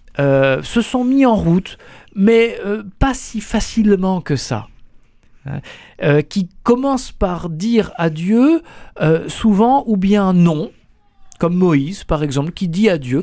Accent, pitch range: French, 135-200 Hz